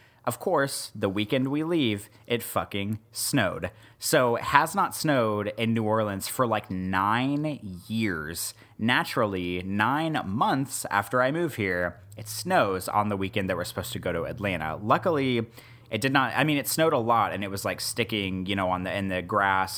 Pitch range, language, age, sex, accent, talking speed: 95-125 Hz, English, 30-49, male, American, 190 wpm